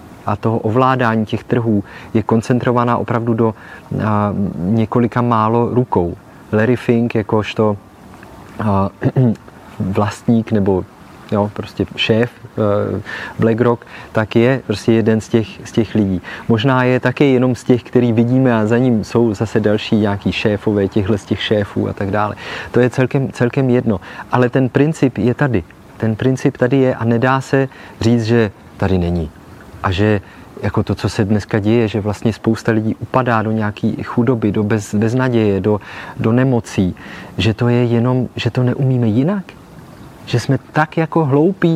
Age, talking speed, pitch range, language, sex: 30-49, 160 wpm, 105-130 Hz, Czech, male